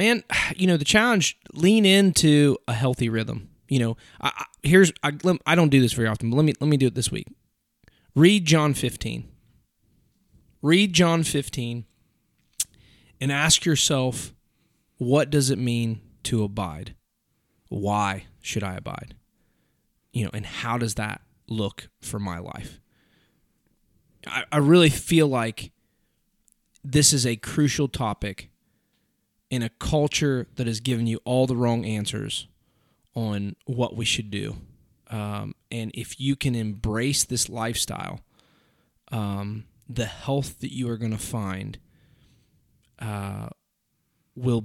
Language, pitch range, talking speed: English, 110-145 Hz, 140 wpm